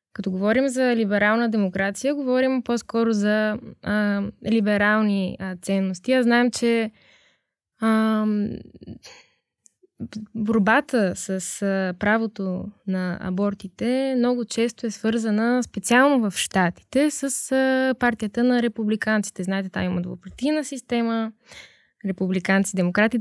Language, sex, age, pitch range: Bulgarian, female, 20-39, 195-235 Hz